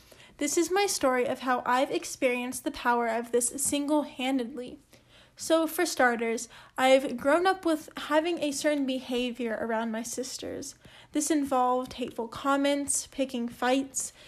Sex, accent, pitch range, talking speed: female, American, 250-290 Hz, 140 wpm